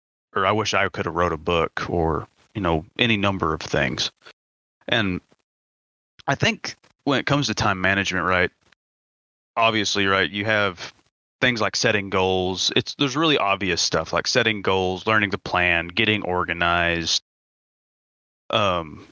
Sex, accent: male, American